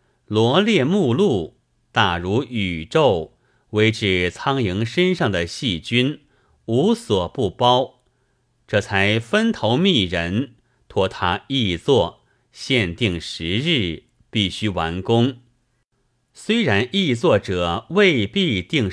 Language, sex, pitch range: Chinese, male, 95-130 Hz